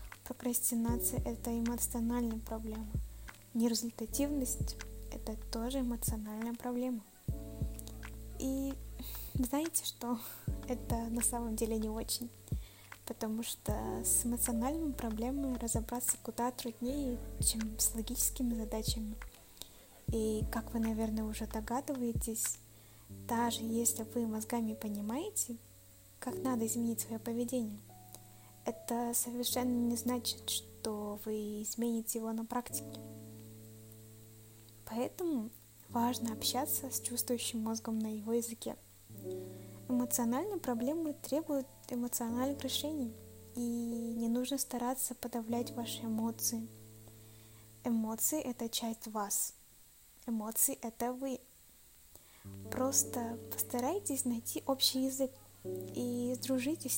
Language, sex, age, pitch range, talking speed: Russian, female, 20-39, 215-245 Hz, 100 wpm